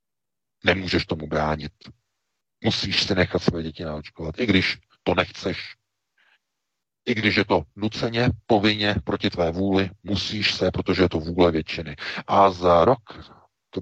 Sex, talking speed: male, 145 wpm